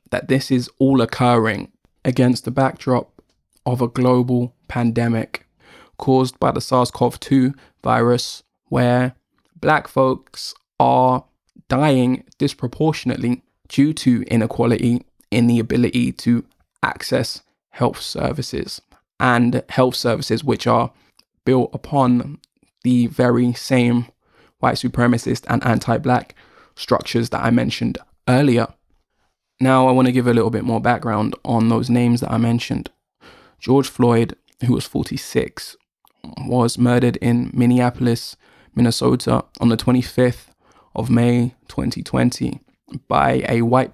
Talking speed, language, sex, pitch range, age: 120 wpm, English, male, 120-130 Hz, 20-39